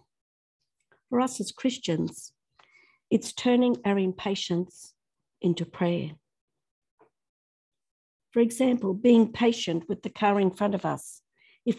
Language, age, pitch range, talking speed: English, 50-69, 175-225 Hz, 110 wpm